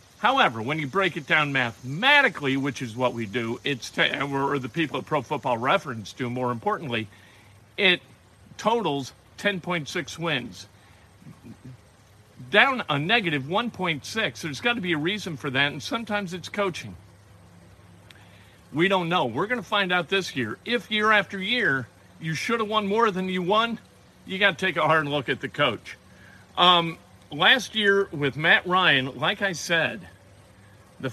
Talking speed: 160 wpm